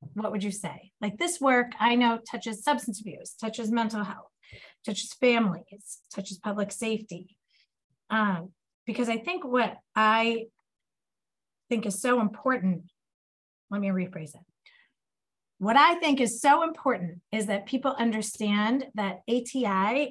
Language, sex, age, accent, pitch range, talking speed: English, female, 30-49, American, 200-250 Hz, 135 wpm